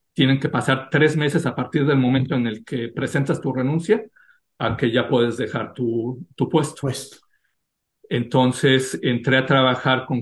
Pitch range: 120-145 Hz